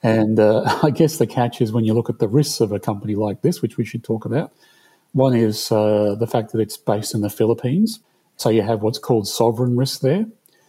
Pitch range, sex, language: 110-125 Hz, male, English